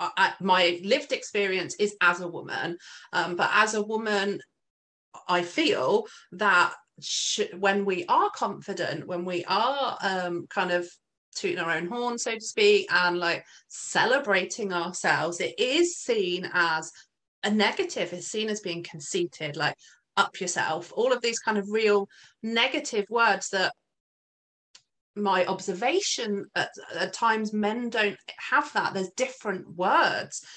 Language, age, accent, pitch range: English, 30-49, British, 180-225 Hz